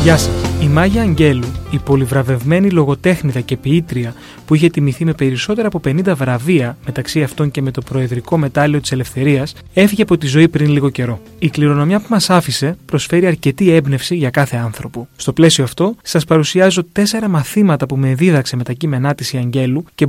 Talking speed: 185 wpm